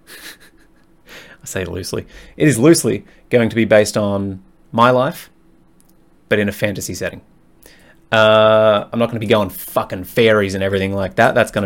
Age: 20-39